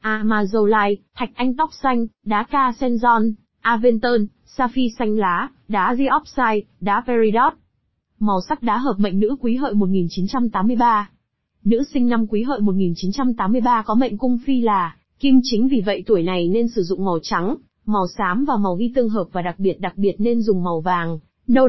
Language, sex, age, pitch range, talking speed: Vietnamese, female, 20-39, 200-250 Hz, 175 wpm